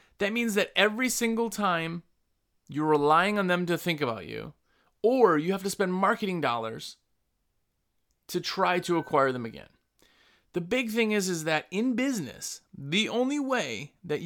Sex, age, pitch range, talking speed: male, 30-49, 155-215 Hz, 165 wpm